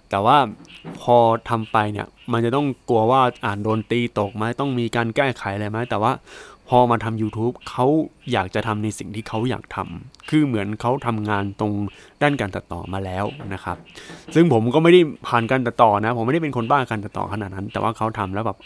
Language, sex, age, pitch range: Thai, male, 20-39, 105-130 Hz